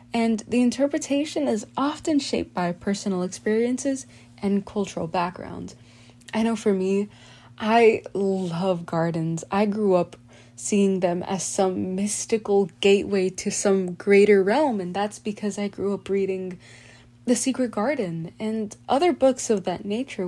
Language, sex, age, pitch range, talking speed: English, female, 20-39, 170-215 Hz, 140 wpm